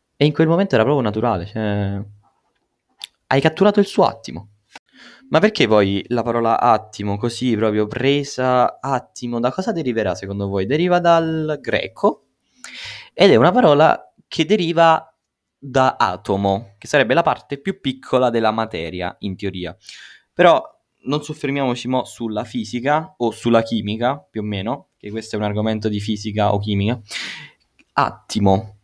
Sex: male